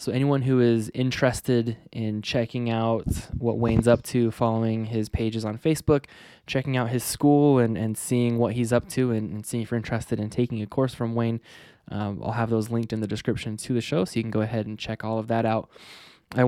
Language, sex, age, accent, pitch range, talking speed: English, male, 10-29, American, 110-125 Hz, 230 wpm